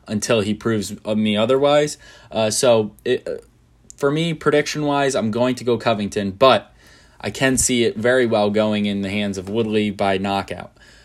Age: 20-39